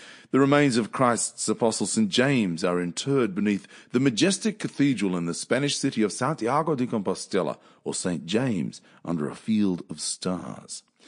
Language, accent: English, Australian